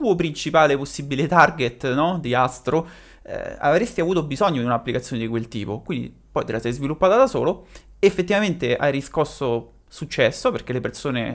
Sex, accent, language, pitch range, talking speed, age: male, native, Italian, 125-155 Hz, 165 wpm, 30-49